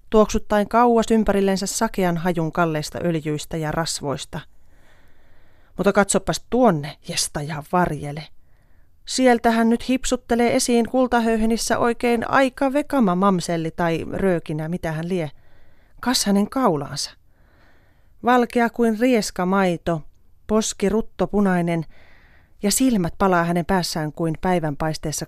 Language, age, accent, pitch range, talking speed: Finnish, 30-49, native, 155-225 Hz, 110 wpm